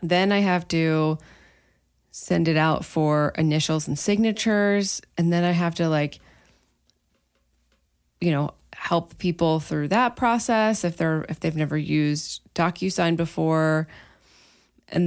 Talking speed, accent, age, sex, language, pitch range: 130 wpm, American, 20-39, female, English, 150-175 Hz